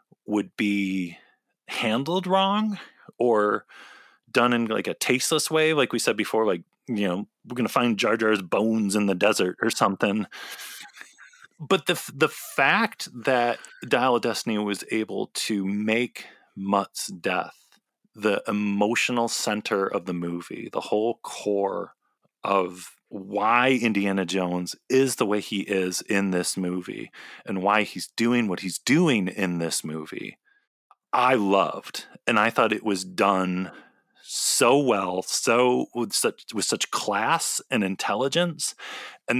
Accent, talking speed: American, 145 wpm